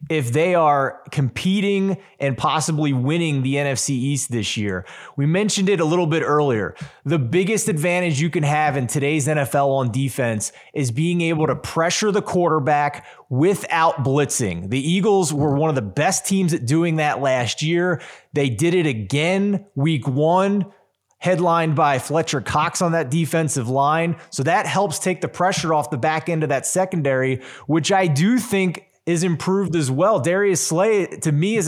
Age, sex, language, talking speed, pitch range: 20-39, male, English, 175 wpm, 140-175 Hz